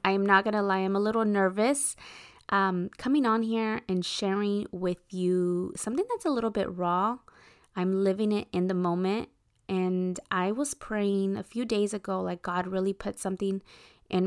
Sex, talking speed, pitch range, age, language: female, 180 wpm, 185-215 Hz, 20-39, English